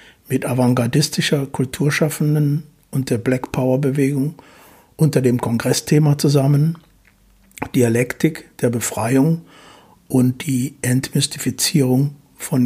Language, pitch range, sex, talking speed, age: German, 125-145 Hz, male, 80 wpm, 60-79